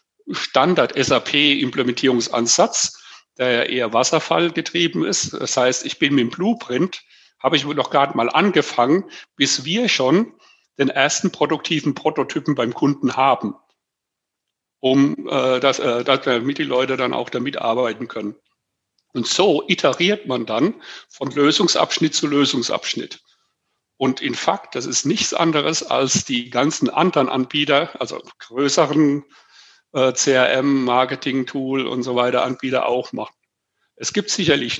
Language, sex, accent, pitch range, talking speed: German, male, German, 125-165 Hz, 135 wpm